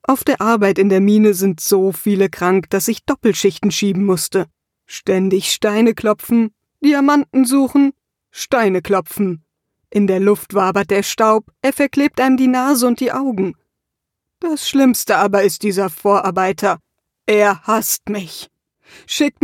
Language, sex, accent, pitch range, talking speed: German, female, German, 200-245 Hz, 140 wpm